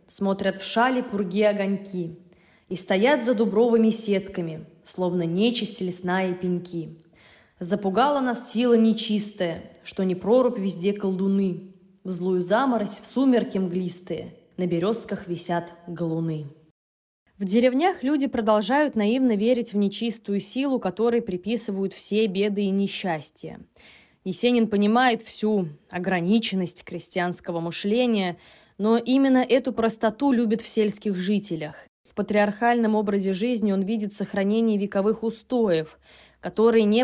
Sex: female